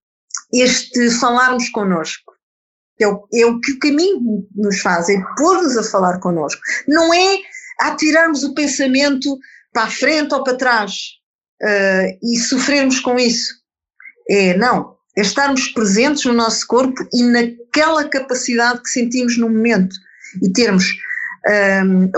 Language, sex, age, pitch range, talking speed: Portuguese, female, 50-69, 215-280 Hz, 135 wpm